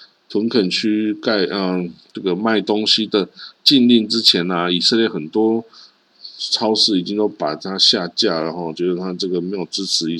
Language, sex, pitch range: Chinese, male, 95-120 Hz